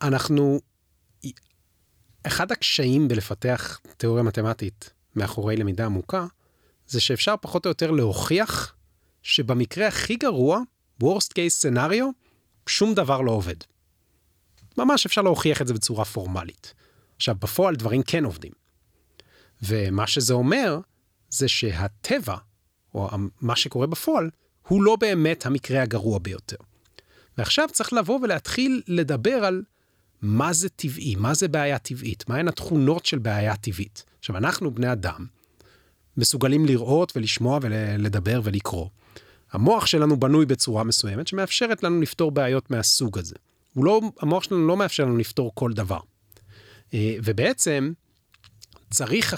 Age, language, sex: 30-49, Hebrew, male